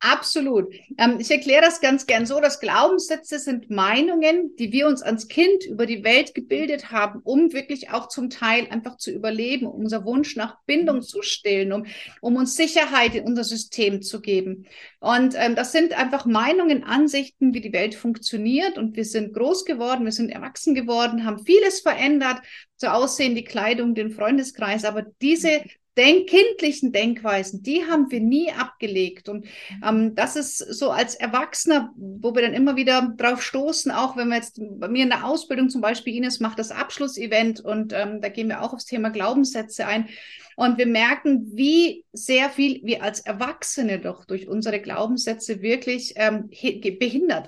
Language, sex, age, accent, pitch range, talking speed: German, female, 50-69, German, 215-280 Hz, 180 wpm